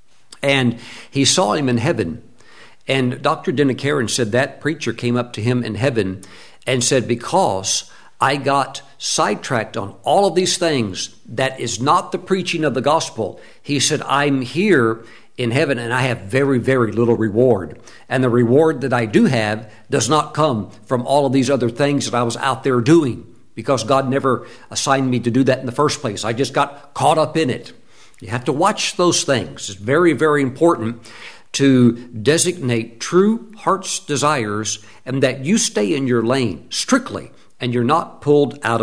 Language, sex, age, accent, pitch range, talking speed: English, male, 60-79, American, 115-145 Hz, 185 wpm